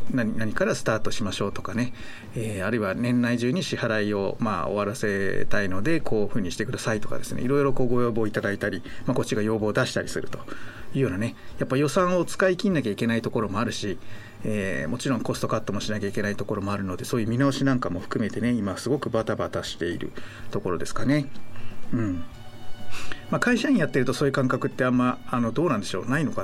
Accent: native